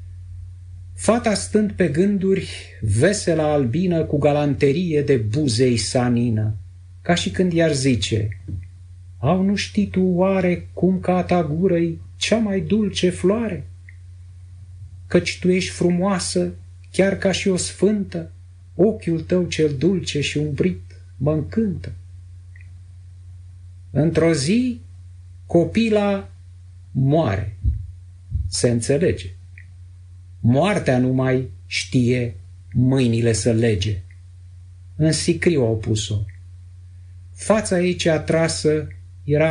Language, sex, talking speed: Romanian, male, 100 wpm